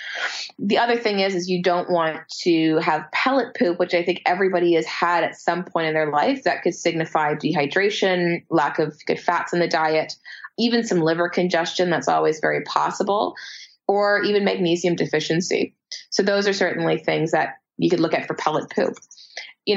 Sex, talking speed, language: female, 185 wpm, English